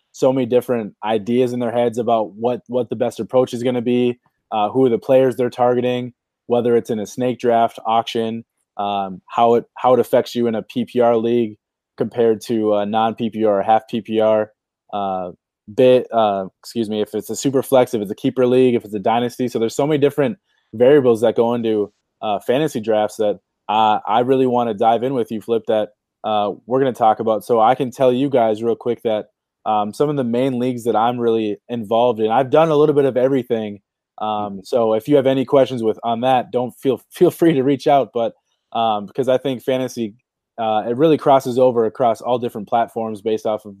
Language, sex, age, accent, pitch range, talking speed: English, male, 20-39, American, 110-130 Hz, 220 wpm